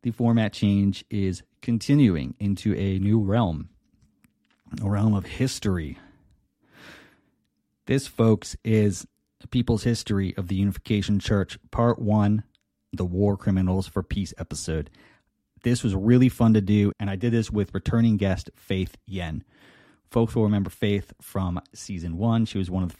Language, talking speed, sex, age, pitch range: English, 150 wpm, male, 30-49, 95-115 Hz